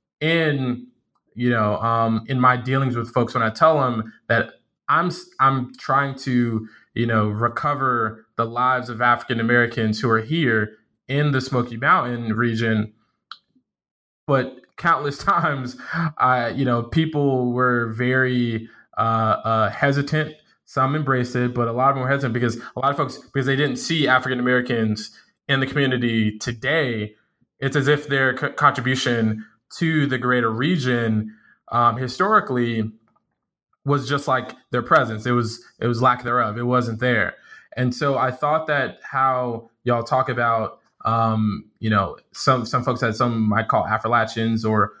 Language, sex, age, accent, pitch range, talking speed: English, male, 20-39, American, 115-130 Hz, 160 wpm